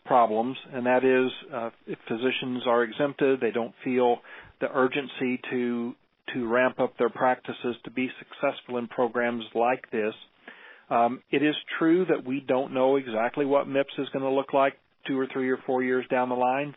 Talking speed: 185 wpm